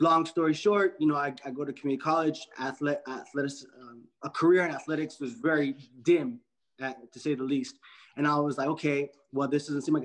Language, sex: English, male